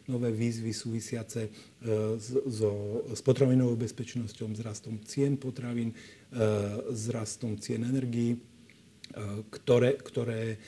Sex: male